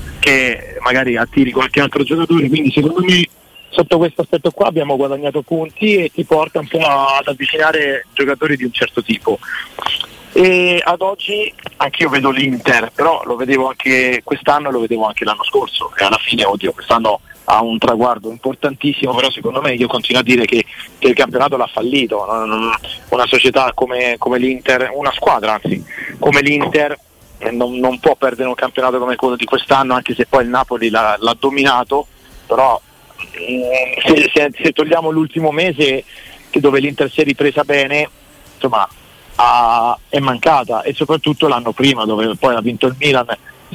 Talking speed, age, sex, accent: 175 wpm, 40-59, male, native